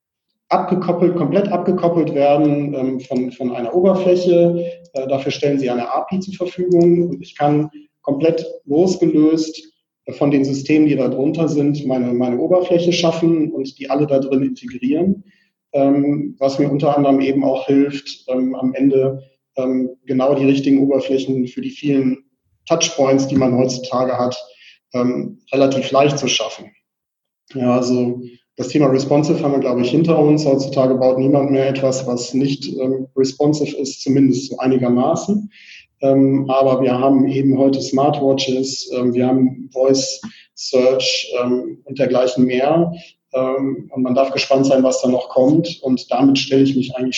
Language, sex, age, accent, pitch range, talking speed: German, male, 40-59, German, 125-145 Hz, 150 wpm